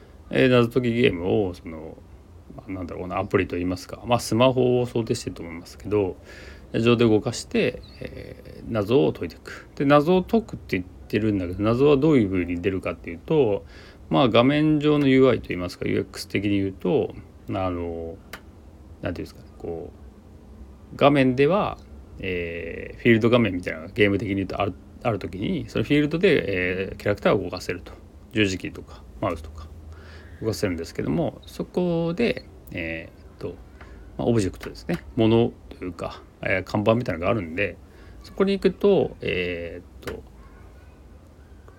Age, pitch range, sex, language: 30-49, 85-125 Hz, male, Japanese